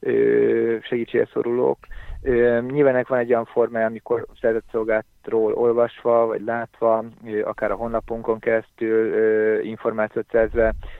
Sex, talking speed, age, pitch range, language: male, 100 wpm, 50-69, 105-115 Hz, Hungarian